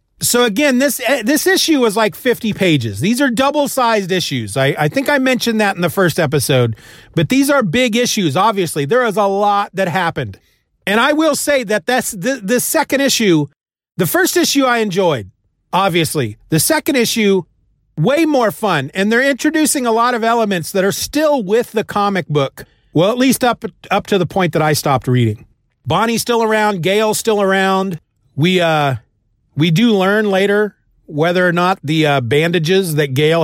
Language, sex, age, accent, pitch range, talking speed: English, male, 40-59, American, 145-225 Hz, 185 wpm